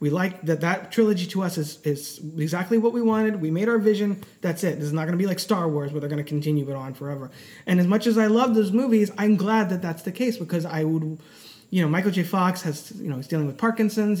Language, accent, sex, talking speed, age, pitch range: English, American, male, 275 wpm, 20-39, 155-210 Hz